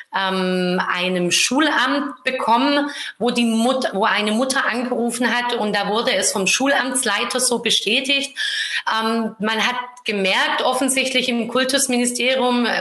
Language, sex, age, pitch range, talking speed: German, female, 30-49, 215-255 Hz, 120 wpm